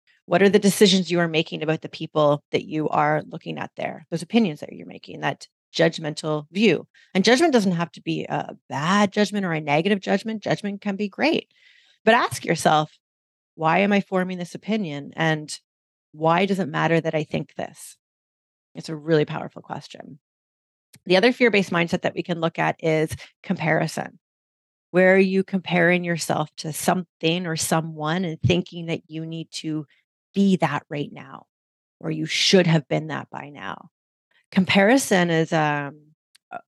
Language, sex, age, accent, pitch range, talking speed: English, female, 30-49, American, 155-195 Hz, 170 wpm